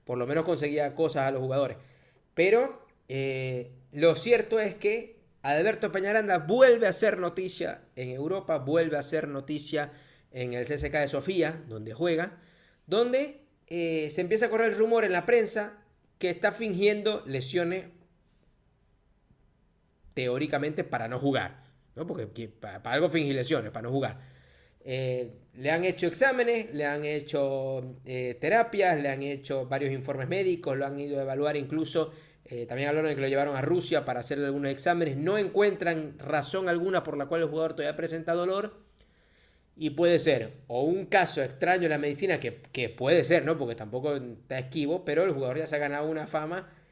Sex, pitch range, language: male, 135-180 Hz, Spanish